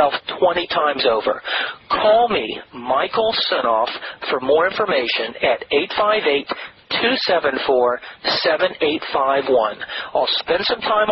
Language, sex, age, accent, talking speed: English, male, 40-59, American, 85 wpm